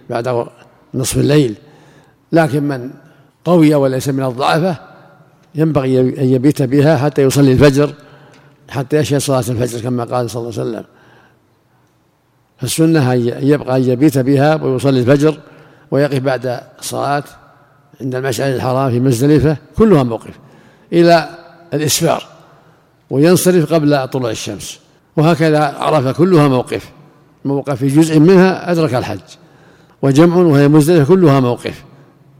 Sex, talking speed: male, 120 wpm